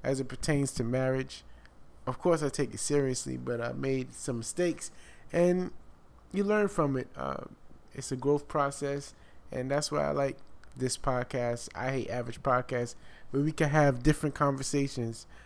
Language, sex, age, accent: English, male, 20-39, American